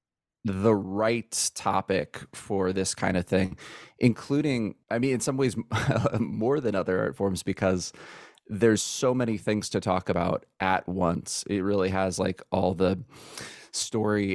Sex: male